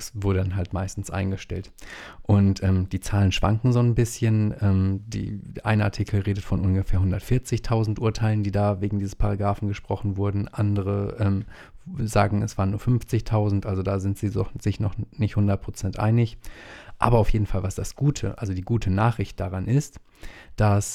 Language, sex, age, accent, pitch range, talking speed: German, male, 30-49, German, 95-110 Hz, 170 wpm